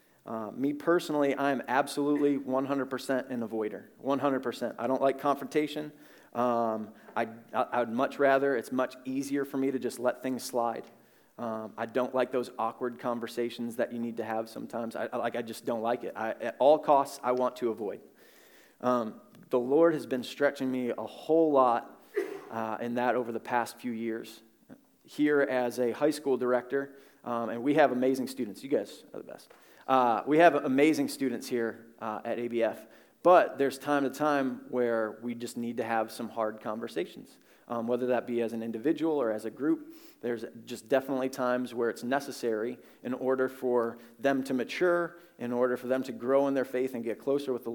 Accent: American